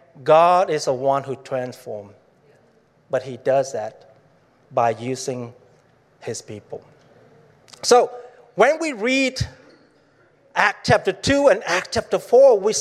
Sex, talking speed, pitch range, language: male, 120 wpm, 140-215 Hz, English